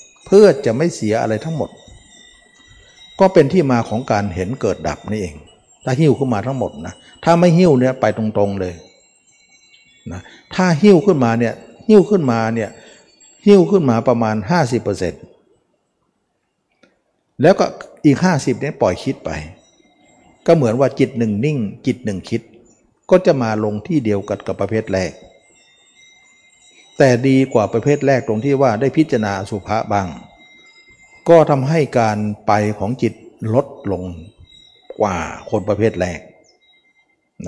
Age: 60-79